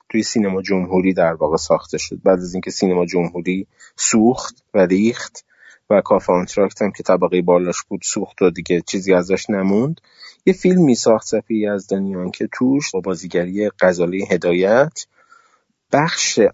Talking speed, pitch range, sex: 145 wpm, 100-120 Hz, male